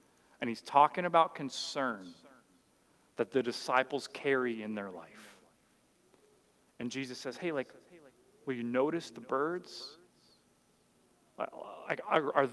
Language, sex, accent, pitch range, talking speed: English, male, American, 130-165 Hz, 110 wpm